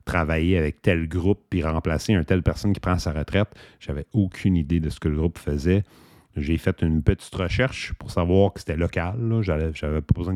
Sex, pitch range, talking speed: male, 80-105 Hz, 215 wpm